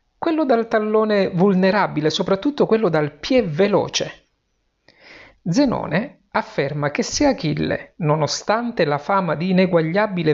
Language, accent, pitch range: Italian, native, 150-210 Hz